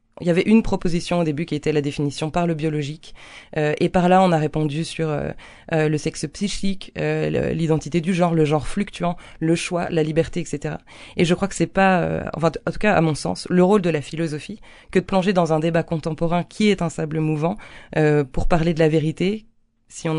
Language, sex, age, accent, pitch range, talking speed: French, female, 20-39, French, 150-175 Hz, 235 wpm